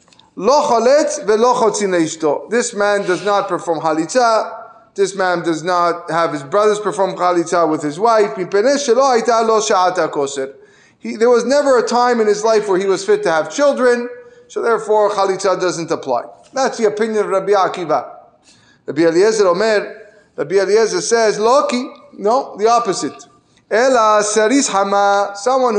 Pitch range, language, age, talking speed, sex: 200-260 Hz, English, 30-49, 130 wpm, male